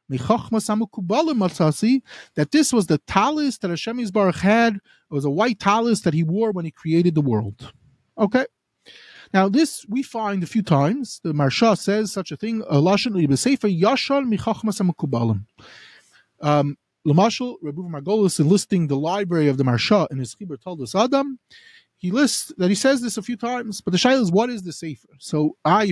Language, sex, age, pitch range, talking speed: English, male, 30-49, 155-225 Hz, 160 wpm